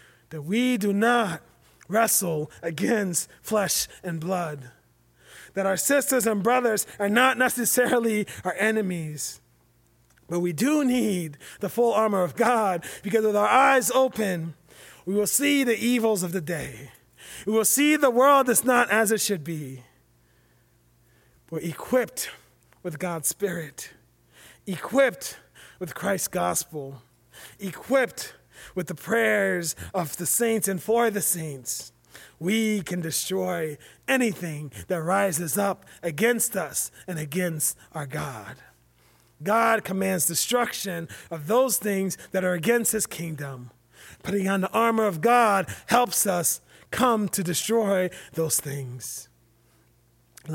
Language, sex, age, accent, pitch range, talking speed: English, male, 30-49, American, 160-225 Hz, 130 wpm